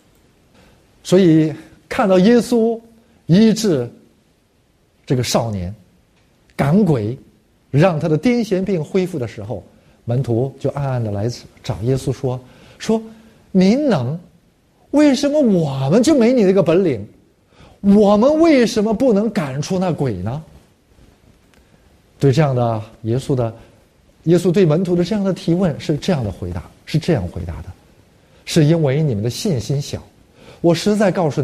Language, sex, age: Chinese, male, 50-69